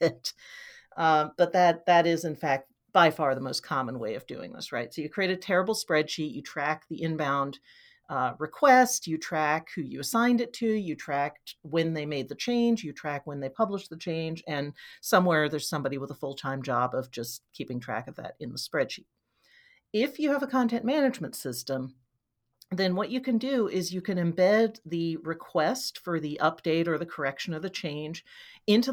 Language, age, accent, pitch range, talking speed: English, 40-59, American, 155-215 Hz, 195 wpm